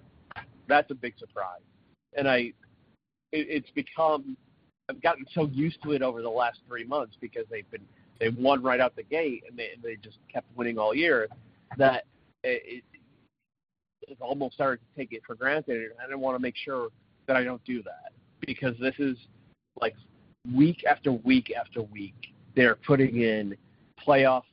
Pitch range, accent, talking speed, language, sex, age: 115-145 Hz, American, 160 wpm, English, male, 30-49